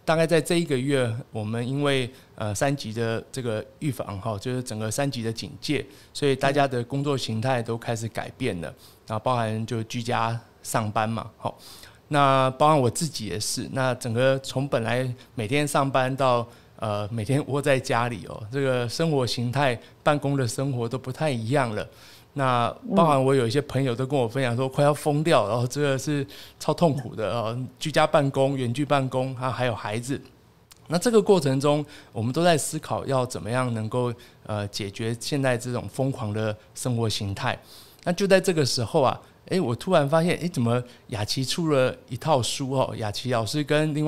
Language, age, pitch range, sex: Chinese, 20-39, 115-145 Hz, male